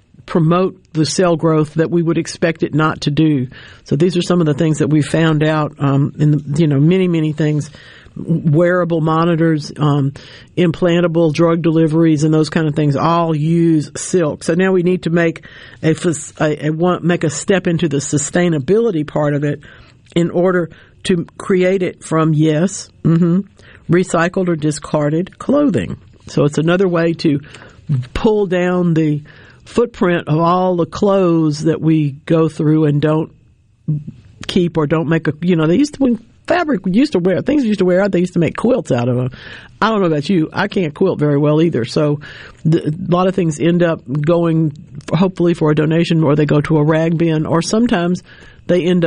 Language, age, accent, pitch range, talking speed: English, 50-69, American, 150-175 Hz, 190 wpm